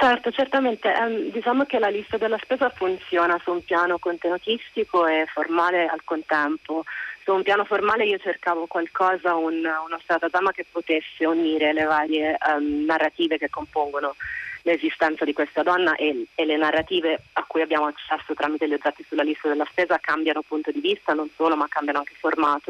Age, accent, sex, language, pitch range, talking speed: 30-49, native, female, Italian, 145-175 Hz, 175 wpm